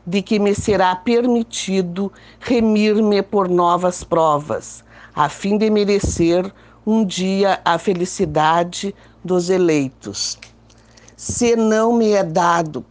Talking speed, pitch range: 110 wpm, 155-215 Hz